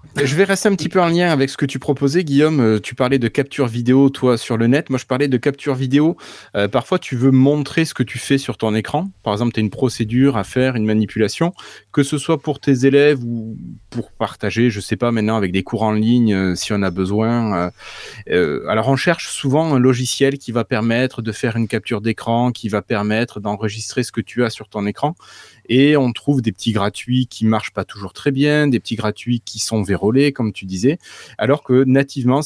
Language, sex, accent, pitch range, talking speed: French, male, French, 110-135 Hz, 230 wpm